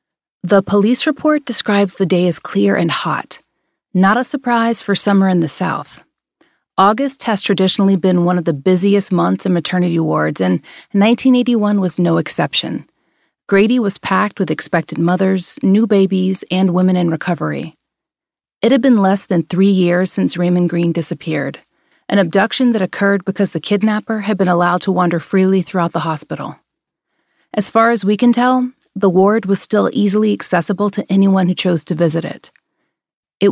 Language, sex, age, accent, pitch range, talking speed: English, female, 30-49, American, 175-205 Hz, 170 wpm